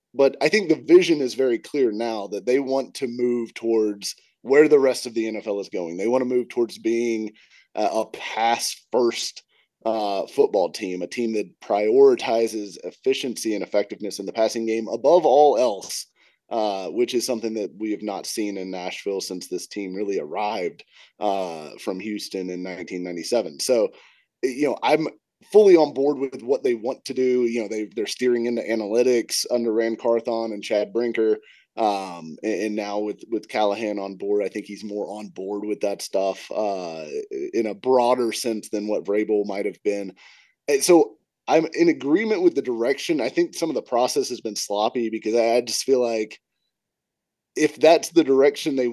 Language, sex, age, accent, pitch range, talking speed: English, male, 30-49, American, 105-135 Hz, 185 wpm